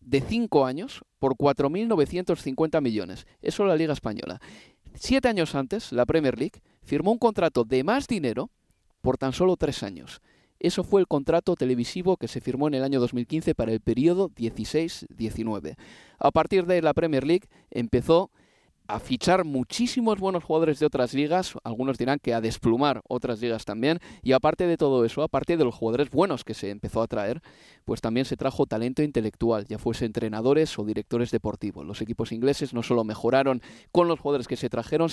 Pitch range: 120-170 Hz